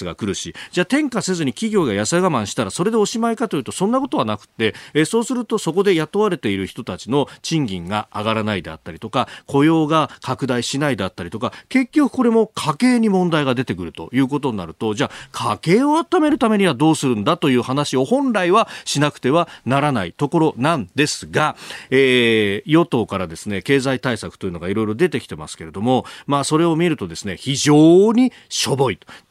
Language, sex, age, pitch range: Japanese, male, 40-59, 115-185 Hz